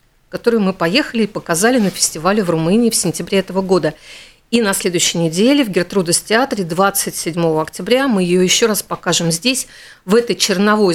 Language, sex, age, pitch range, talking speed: Russian, female, 50-69, 170-220 Hz, 165 wpm